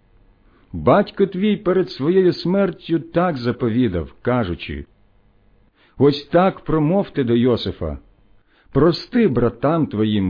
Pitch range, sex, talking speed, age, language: 100-165 Hz, male, 95 wpm, 50-69, Ukrainian